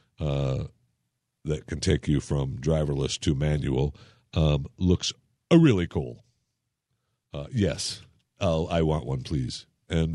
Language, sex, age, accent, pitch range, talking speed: English, male, 60-79, American, 90-125 Hz, 125 wpm